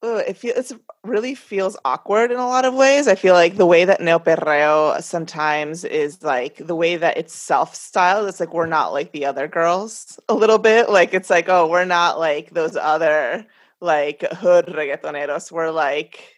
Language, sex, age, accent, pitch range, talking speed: English, female, 30-49, American, 160-215 Hz, 185 wpm